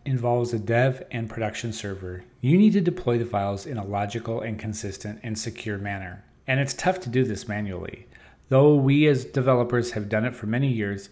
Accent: American